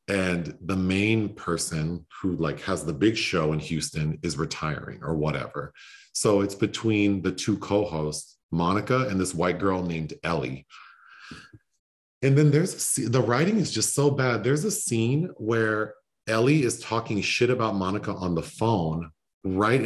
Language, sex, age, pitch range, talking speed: English, male, 40-59, 95-145 Hz, 155 wpm